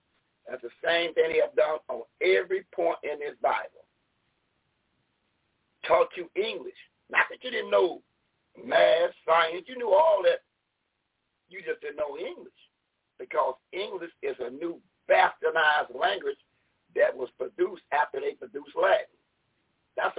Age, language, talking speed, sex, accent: 50-69, English, 140 wpm, male, American